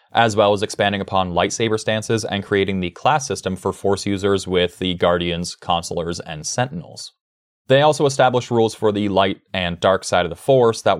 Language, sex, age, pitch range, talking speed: English, male, 20-39, 90-110 Hz, 190 wpm